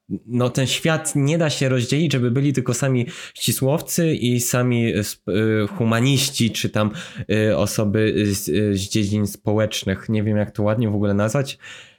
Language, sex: Polish, male